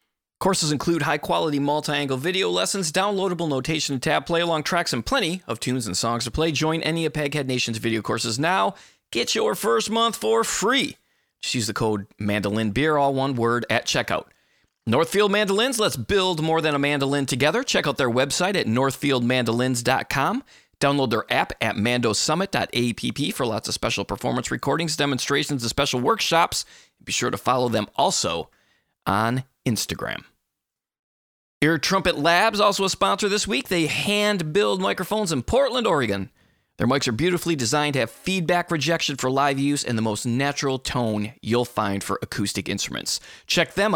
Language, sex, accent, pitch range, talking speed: English, male, American, 110-160 Hz, 165 wpm